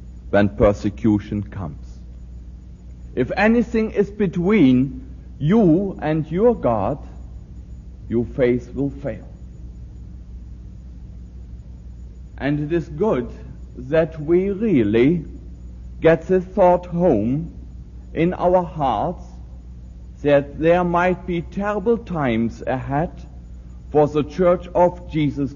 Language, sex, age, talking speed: English, male, 60-79, 95 wpm